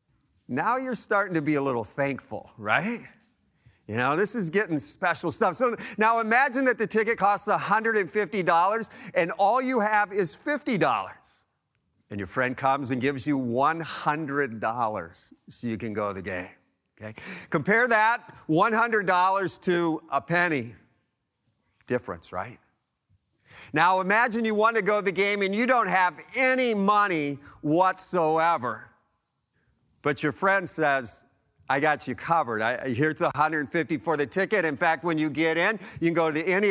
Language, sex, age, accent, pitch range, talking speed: English, male, 50-69, American, 140-205 Hz, 155 wpm